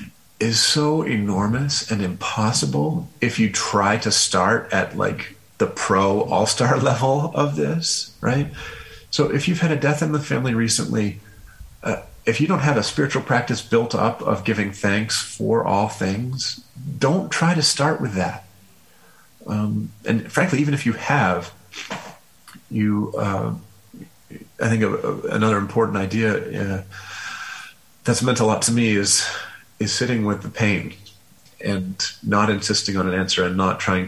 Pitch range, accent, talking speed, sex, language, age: 95-130 Hz, American, 155 wpm, male, English, 40-59